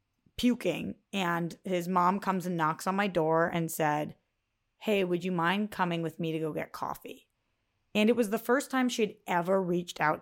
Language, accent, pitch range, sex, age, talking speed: English, American, 165-210 Hz, female, 30-49, 195 wpm